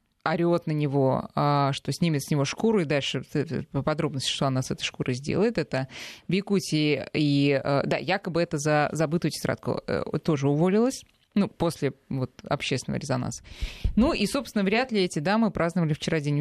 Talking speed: 160 wpm